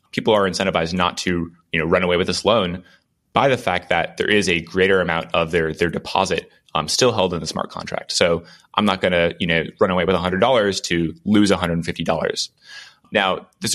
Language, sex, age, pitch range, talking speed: English, male, 20-39, 85-95 Hz, 210 wpm